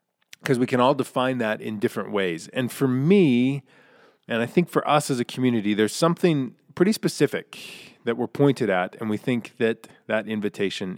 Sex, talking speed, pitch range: male, 185 wpm, 120-165 Hz